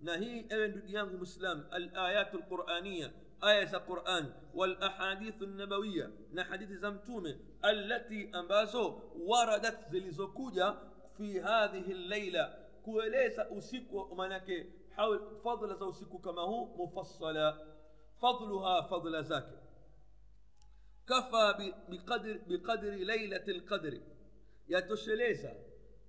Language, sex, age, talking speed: Swahili, male, 50-69, 40 wpm